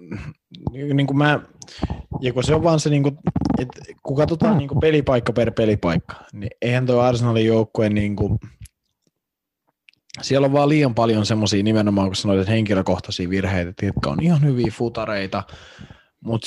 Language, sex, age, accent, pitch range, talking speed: Finnish, male, 20-39, native, 95-125 Hz, 150 wpm